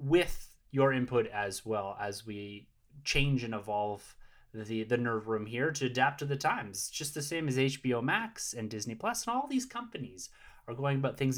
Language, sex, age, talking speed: English, male, 30-49, 195 wpm